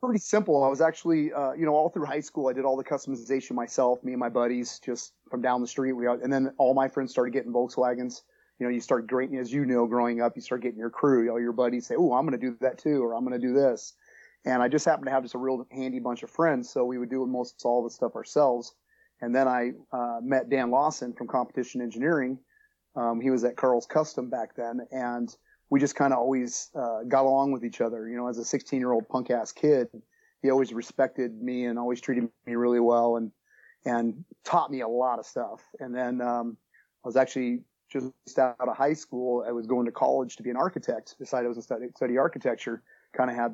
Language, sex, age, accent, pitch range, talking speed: English, male, 30-49, American, 120-135 Hz, 245 wpm